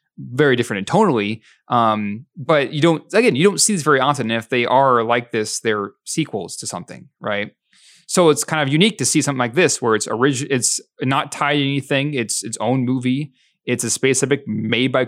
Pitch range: 120-150 Hz